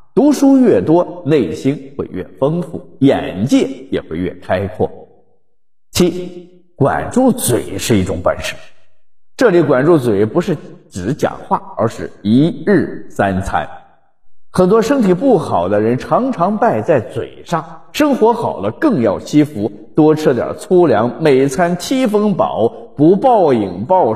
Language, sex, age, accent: Chinese, male, 50-69, native